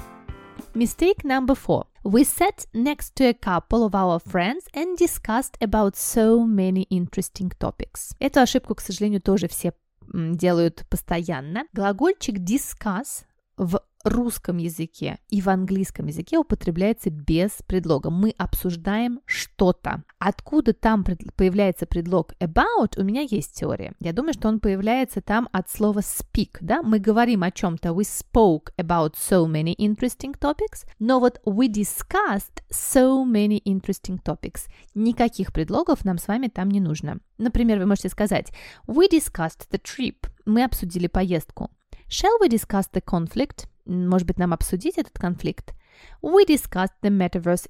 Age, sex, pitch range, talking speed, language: 20-39, female, 180-240 Hz, 145 wpm, Russian